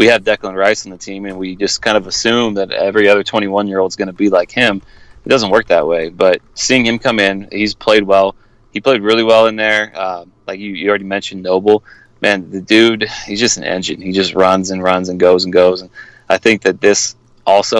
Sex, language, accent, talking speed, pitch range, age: male, English, American, 245 wpm, 95-105 Hz, 30-49